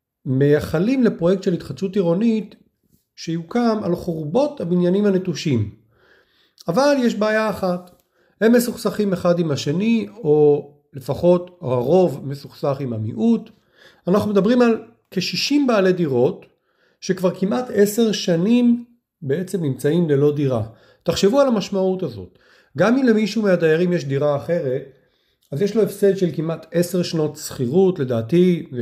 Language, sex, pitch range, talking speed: Hebrew, male, 145-205 Hz, 125 wpm